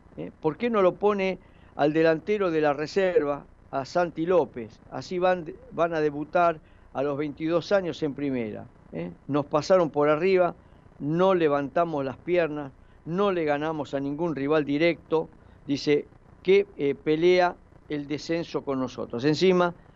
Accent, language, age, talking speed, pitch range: Argentinian, Spanish, 50-69, 145 wpm, 135-170 Hz